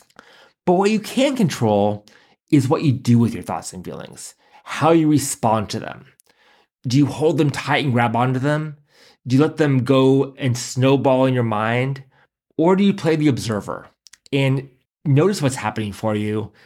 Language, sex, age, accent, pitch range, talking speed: English, male, 30-49, American, 115-145 Hz, 180 wpm